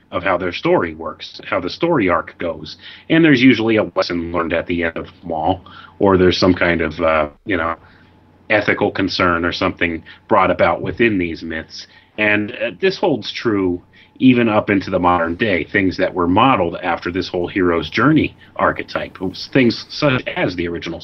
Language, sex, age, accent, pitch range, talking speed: English, male, 30-49, American, 85-105 Hz, 185 wpm